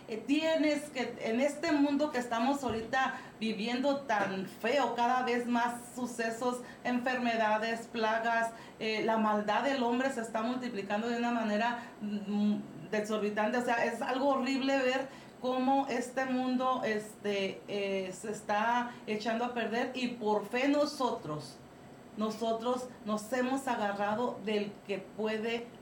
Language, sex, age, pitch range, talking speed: Spanish, female, 40-59, 210-255 Hz, 130 wpm